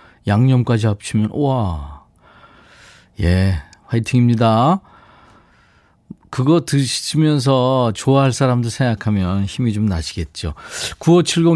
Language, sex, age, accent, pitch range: Korean, male, 40-59, native, 105-140 Hz